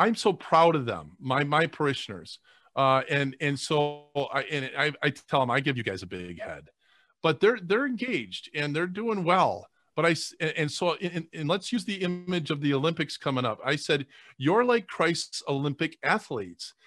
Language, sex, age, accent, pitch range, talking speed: English, male, 40-59, American, 135-185 Hz, 195 wpm